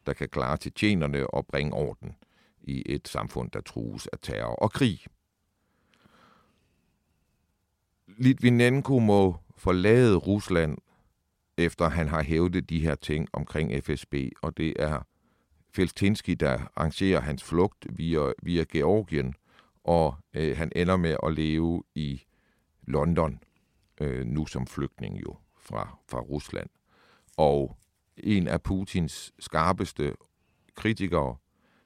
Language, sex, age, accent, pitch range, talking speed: Danish, male, 50-69, native, 70-90 Hz, 120 wpm